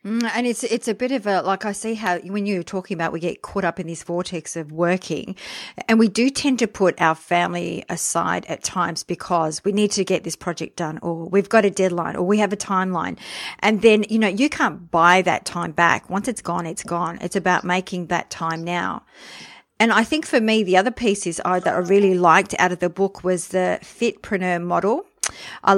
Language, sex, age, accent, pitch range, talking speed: English, female, 50-69, Australian, 175-210 Hz, 225 wpm